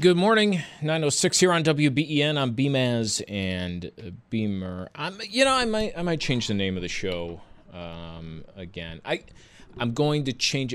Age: 30-49